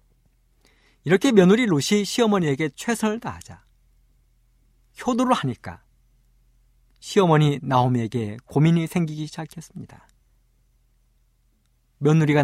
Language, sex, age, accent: Korean, male, 50-69, native